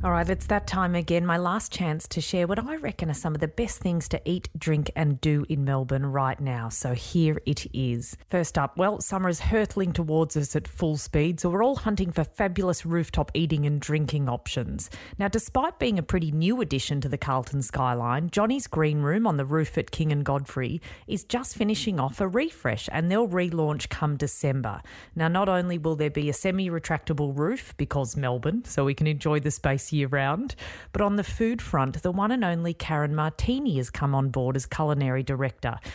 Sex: female